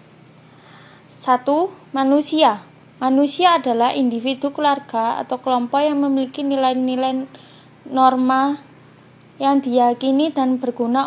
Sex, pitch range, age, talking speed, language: female, 245-280 Hz, 20-39, 85 wpm, Indonesian